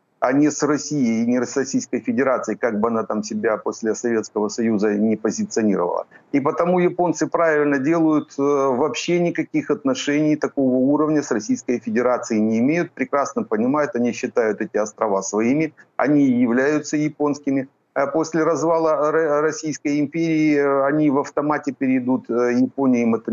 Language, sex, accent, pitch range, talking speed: Ukrainian, male, native, 120-155 Hz, 140 wpm